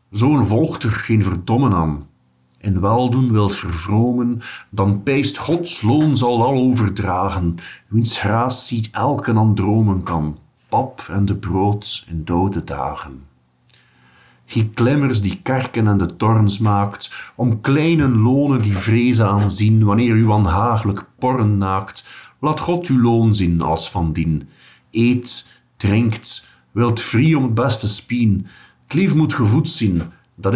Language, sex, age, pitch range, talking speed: Dutch, male, 50-69, 95-125 Hz, 140 wpm